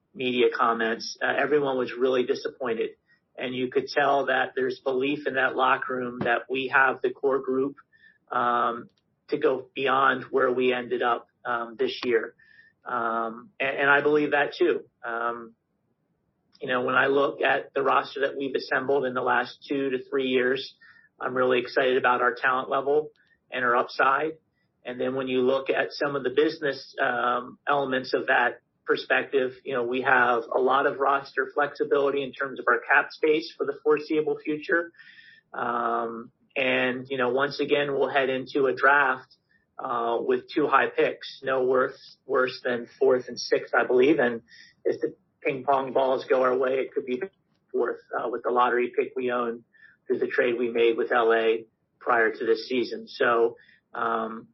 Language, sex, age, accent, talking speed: English, male, 40-59, American, 180 wpm